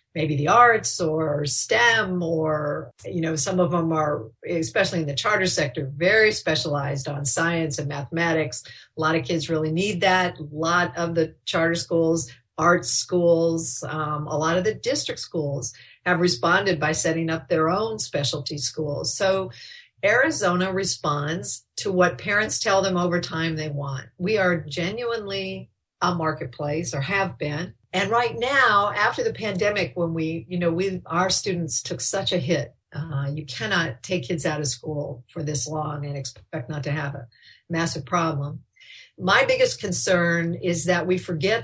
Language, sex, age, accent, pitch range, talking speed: English, female, 50-69, American, 150-185 Hz, 170 wpm